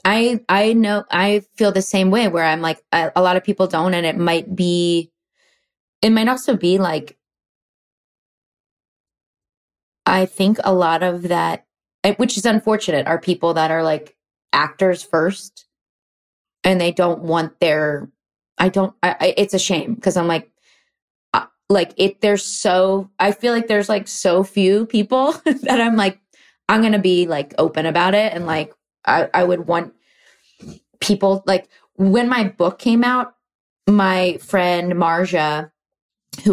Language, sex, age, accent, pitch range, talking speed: English, female, 20-39, American, 175-225 Hz, 160 wpm